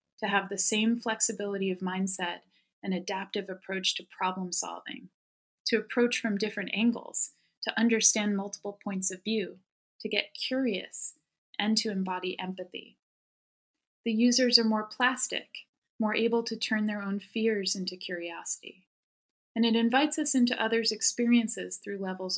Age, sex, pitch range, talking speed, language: 20-39, female, 190-230 Hz, 140 wpm, English